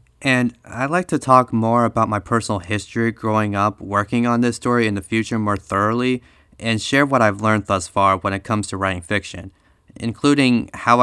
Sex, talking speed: male, 195 wpm